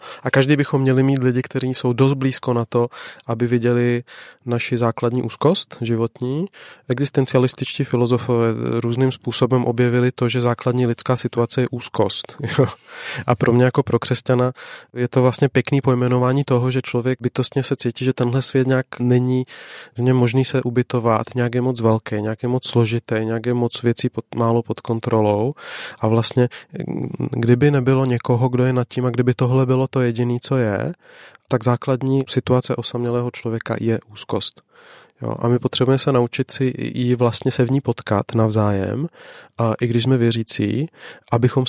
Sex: male